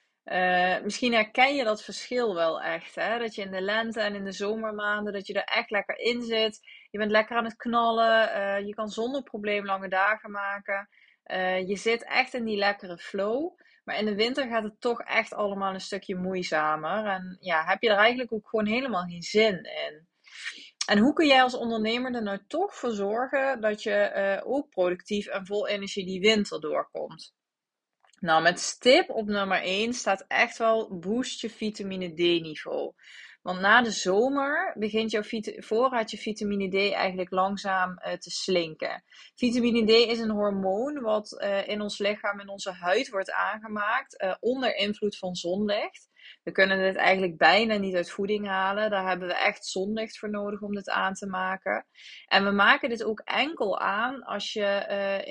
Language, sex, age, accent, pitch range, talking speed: Dutch, female, 20-39, Dutch, 190-225 Hz, 185 wpm